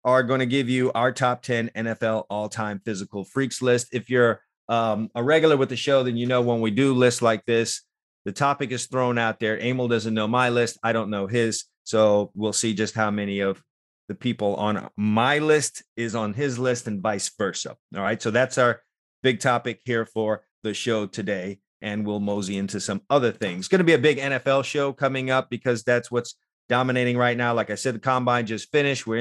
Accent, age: American, 30-49